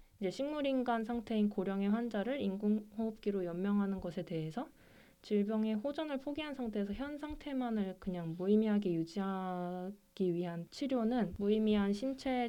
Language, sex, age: Korean, female, 20-39